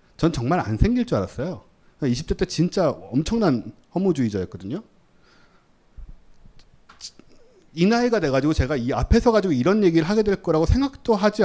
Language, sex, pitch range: Korean, male, 110-180 Hz